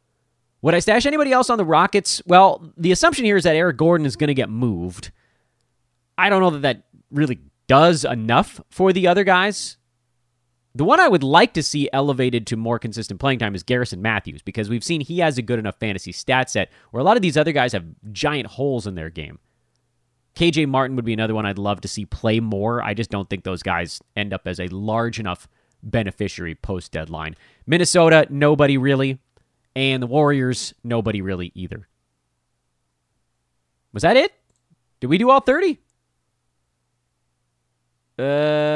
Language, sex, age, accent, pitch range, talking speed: English, male, 30-49, American, 100-155 Hz, 180 wpm